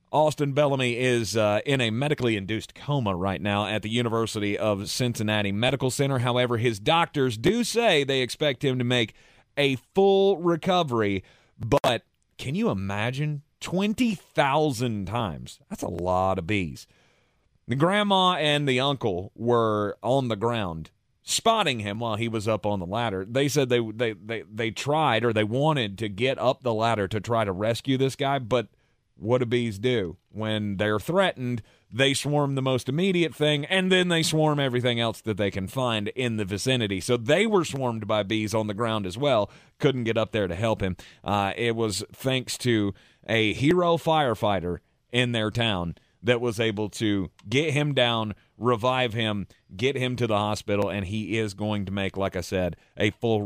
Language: English